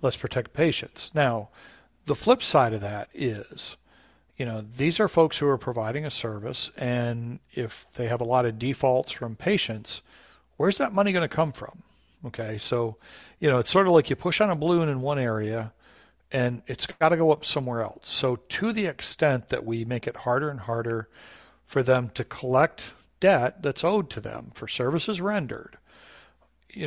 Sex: male